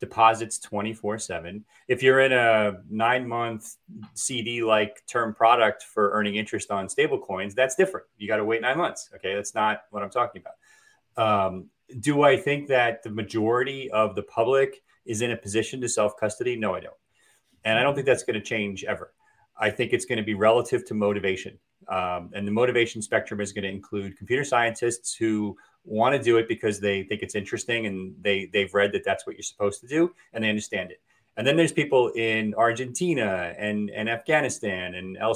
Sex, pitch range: male, 105-140 Hz